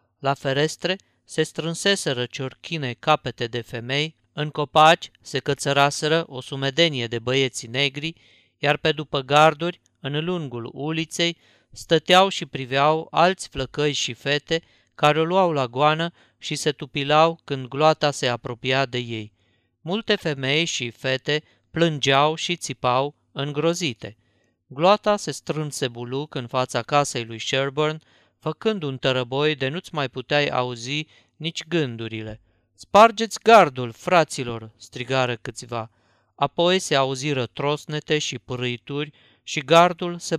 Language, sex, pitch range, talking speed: Romanian, male, 125-160 Hz, 130 wpm